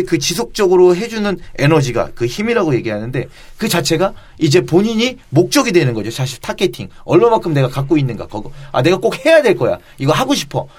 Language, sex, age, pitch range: Korean, male, 30-49, 130-185 Hz